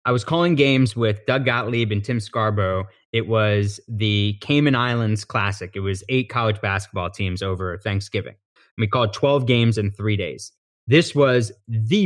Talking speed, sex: 170 wpm, male